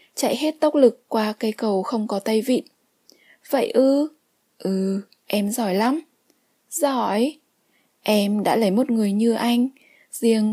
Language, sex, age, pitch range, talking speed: Vietnamese, female, 20-39, 215-275 Hz, 150 wpm